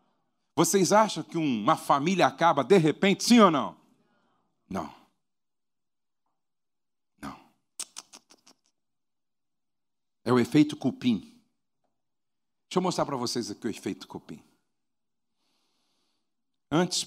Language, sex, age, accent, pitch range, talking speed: Portuguese, male, 60-79, Brazilian, 165-235 Hz, 95 wpm